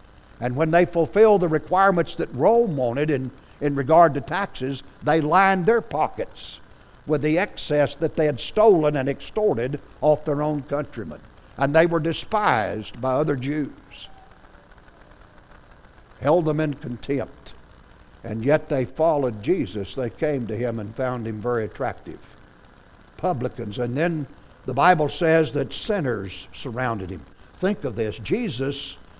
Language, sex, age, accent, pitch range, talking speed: English, male, 60-79, American, 125-160 Hz, 145 wpm